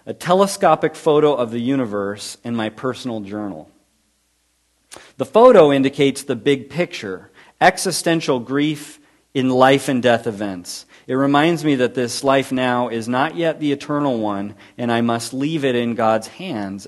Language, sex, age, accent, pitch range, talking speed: English, male, 40-59, American, 100-135 Hz, 155 wpm